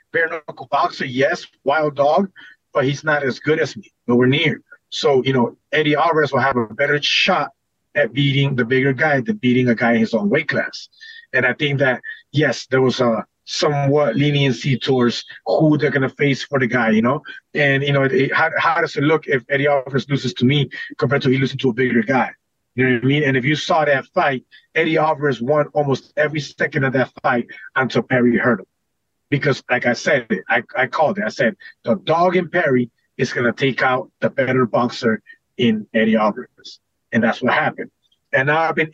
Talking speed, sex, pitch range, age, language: 215 wpm, male, 125-150 Hz, 30-49, English